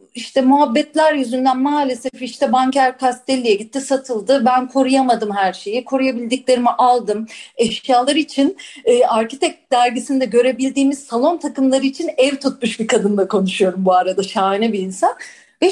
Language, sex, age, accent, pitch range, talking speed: Turkish, female, 40-59, native, 245-335 Hz, 135 wpm